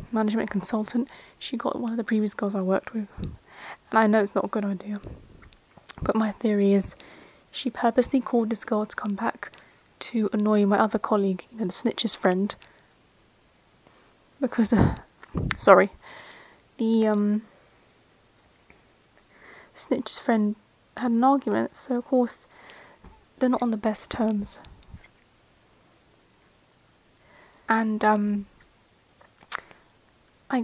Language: English